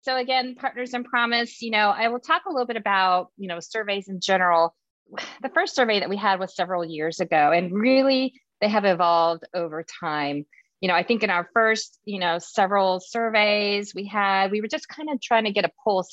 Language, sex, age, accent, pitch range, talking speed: English, female, 30-49, American, 175-220 Hz, 220 wpm